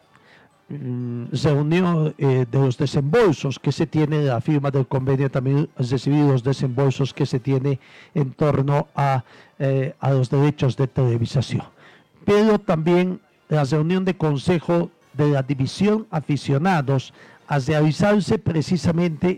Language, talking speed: Spanish, 135 wpm